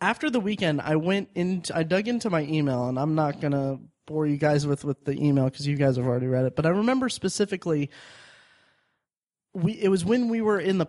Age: 20-39